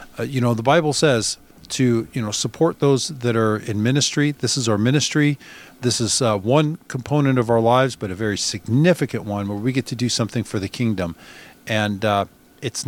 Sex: male